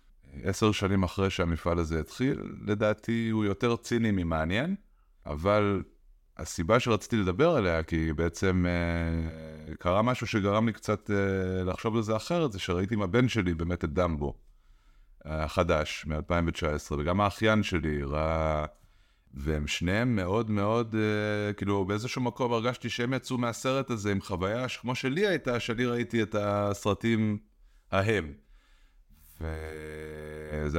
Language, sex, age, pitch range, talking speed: Hebrew, male, 30-49, 90-125 Hz, 125 wpm